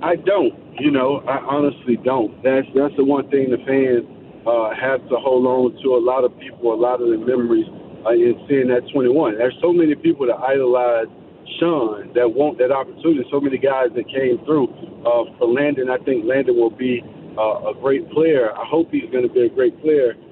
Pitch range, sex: 125-170 Hz, male